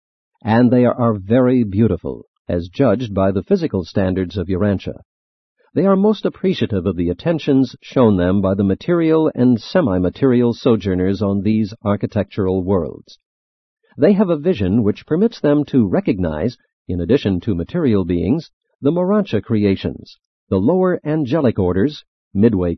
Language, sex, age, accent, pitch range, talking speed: English, male, 50-69, American, 95-145 Hz, 140 wpm